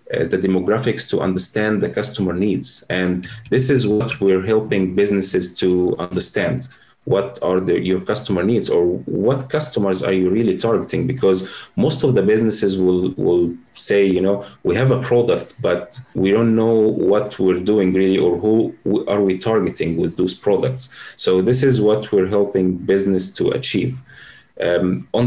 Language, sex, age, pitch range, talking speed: English, male, 30-49, 95-115 Hz, 165 wpm